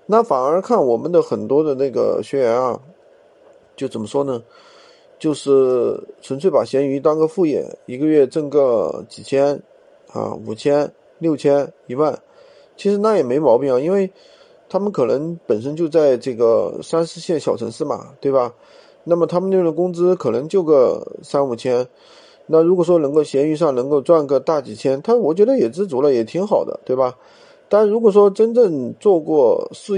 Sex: male